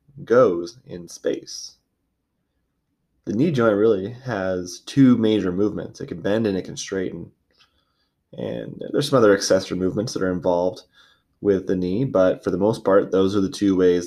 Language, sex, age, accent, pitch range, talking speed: English, male, 20-39, American, 90-110 Hz, 170 wpm